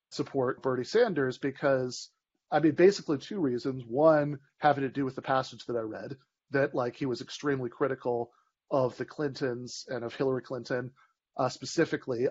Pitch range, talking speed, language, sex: 125-165 Hz, 165 wpm, English, male